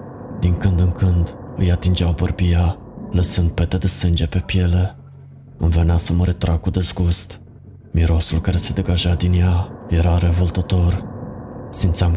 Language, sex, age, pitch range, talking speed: Romanian, male, 20-39, 85-100 Hz, 145 wpm